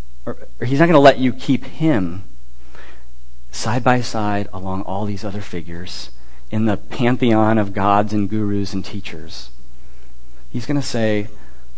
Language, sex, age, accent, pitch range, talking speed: English, male, 40-59, American, 90-135 Hz, 155 wpm